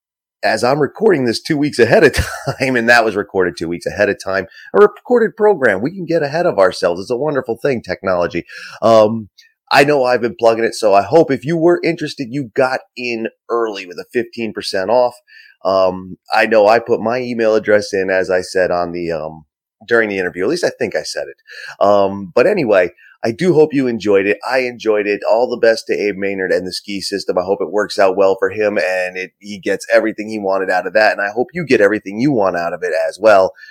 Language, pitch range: English, 100-155 Hz